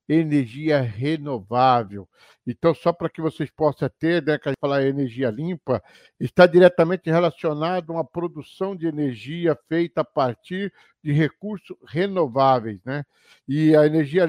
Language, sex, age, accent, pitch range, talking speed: Portuguese, male, 60-79, Brazilian, 145-175 Hz, 145 wpm